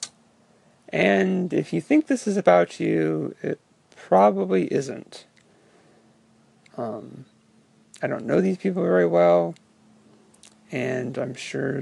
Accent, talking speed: American, 110 wpm